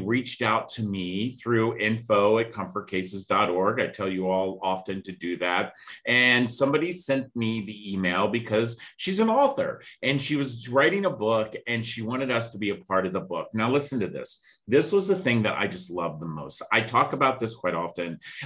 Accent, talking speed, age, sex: American, 205 wpm, 40-59, male